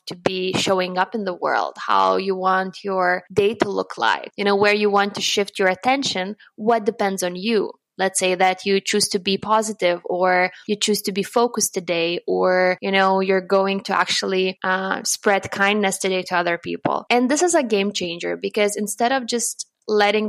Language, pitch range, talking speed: English, 190-220 Hz, 200 wpm